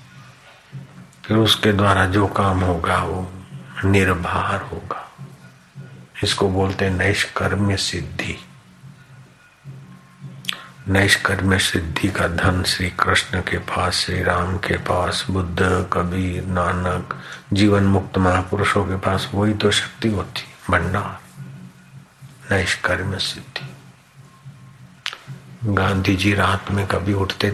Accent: native